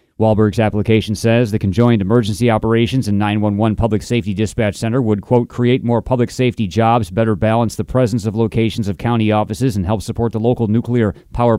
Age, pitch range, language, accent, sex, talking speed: 30-49, 100-120 Hz, English, American, male, 185 wpm